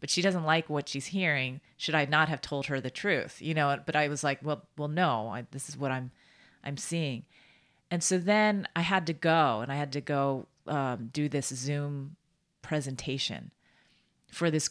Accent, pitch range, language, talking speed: American, 140-175 Hz, English, 205 wpm